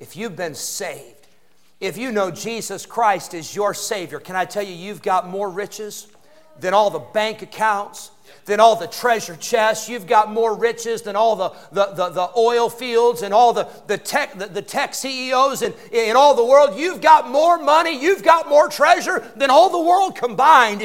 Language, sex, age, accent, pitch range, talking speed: English, male, 50-69, American, 155-225 Hz, 200 wpm